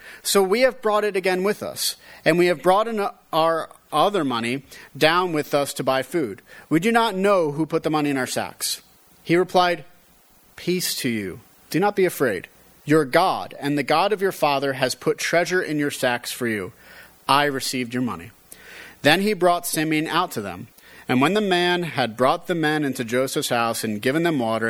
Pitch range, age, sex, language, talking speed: 130-175 Hz, 30-49, male, English, 200 wpm